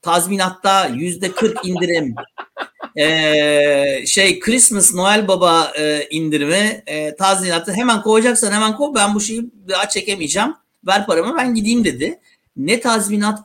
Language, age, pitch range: Turkish, 60-79, 155-220 Hz